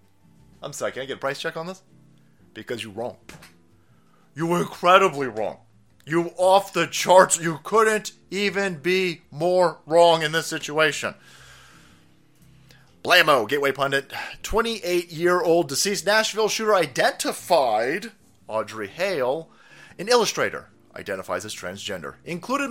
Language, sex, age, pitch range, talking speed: English, male, 30-49, 160-230 Hz, 120 wpm